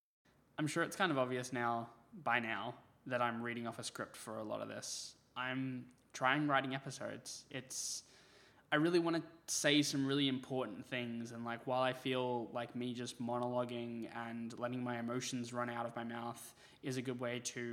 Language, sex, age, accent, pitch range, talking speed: English, male, 10-29, Australian, 115-125 Hz, 195 wpm